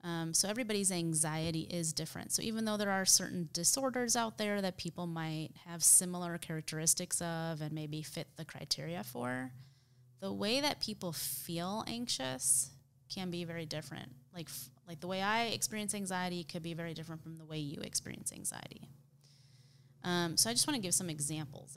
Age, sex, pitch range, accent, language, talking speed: 20-39, female, 135-180 Hz, American, English, 180 wpm